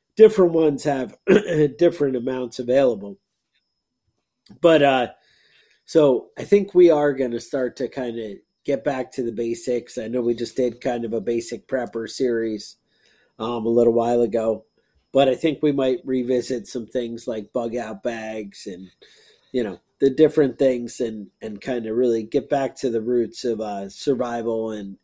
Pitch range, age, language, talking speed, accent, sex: 115-145 Hz, 40-59, English, 175 wpm, American, male